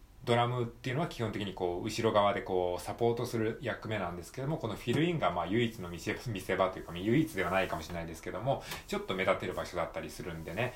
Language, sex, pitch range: Japanese, male, 90-125 Hz